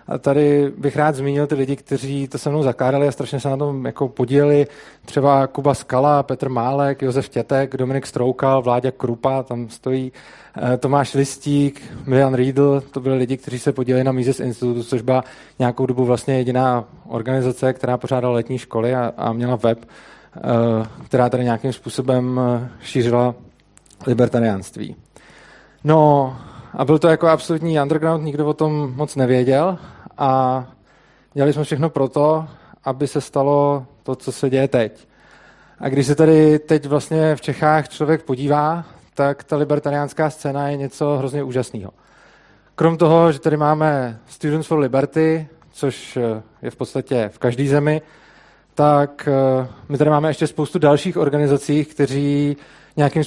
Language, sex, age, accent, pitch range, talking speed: Czech, male, 20-39, native, 130-150 Hz, 150 wpm